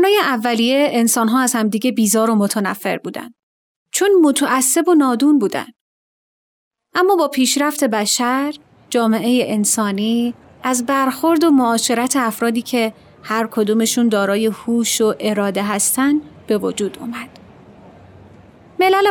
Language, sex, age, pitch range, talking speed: Persian, female, 30-49, 225-295 Hz, 115 wpm